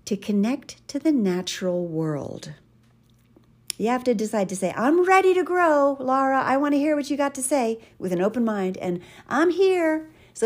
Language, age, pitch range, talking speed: English, 50-69, 165-245 Hz, 195 wpm